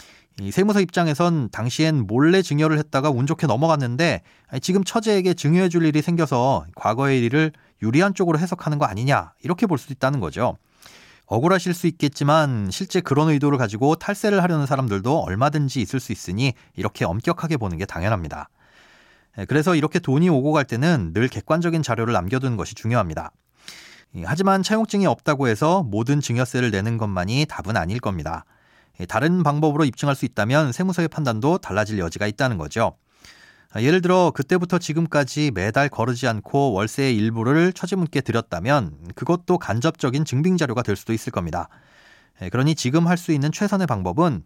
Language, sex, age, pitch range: Korean, male, 30-49, 115-165 Hz